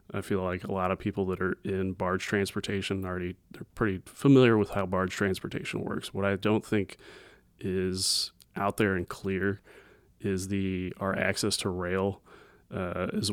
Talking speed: 165 wpm